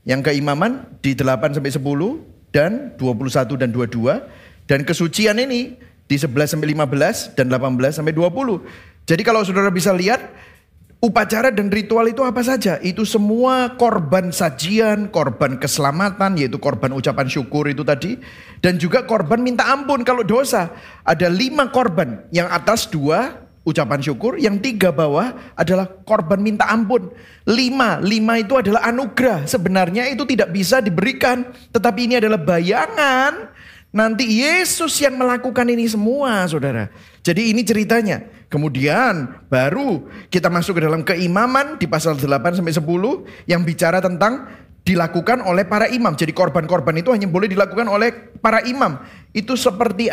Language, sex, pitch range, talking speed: Indonesian, male, 160-235 Hz, 135 wpm